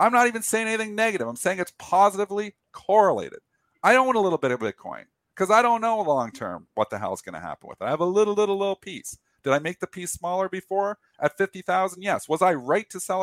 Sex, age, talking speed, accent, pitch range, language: male, 50-69, 255 wpm, American, 135-185 Hz, English